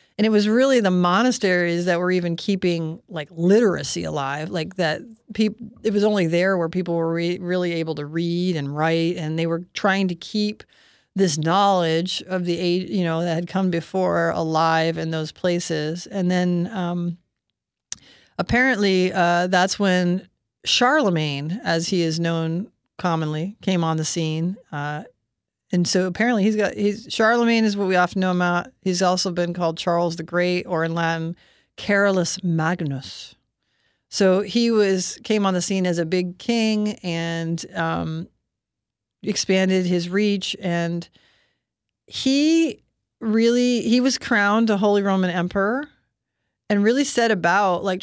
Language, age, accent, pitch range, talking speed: English, 40-59, American, 170-200 Hz, 155 wpm